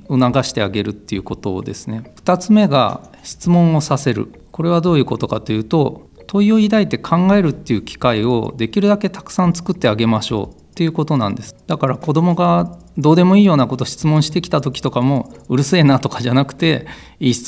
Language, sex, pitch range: Japanese, male, 115-155 Hz